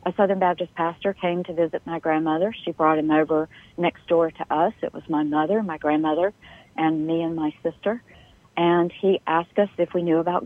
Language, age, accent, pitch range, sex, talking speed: English, 50-69, American, 165-205 Hz, female, 205 wpm